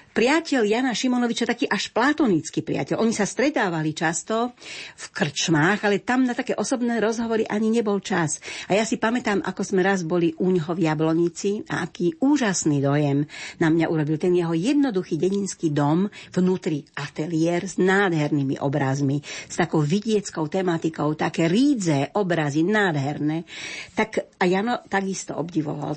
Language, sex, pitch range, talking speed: Slovak, female, 155-200 Hz, 150 wpm